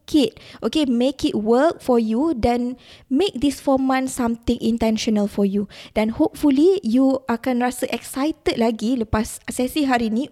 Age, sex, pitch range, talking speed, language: 20-39, female, 215-260 Hz, 155 wpm, Malay